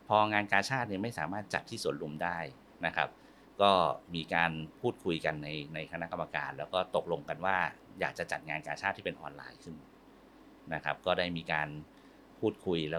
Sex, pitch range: male, 80-100 Hz